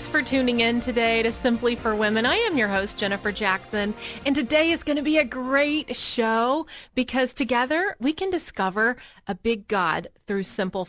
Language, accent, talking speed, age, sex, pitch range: English, American, 185 wpm, 30-49, female, 210-280 Hz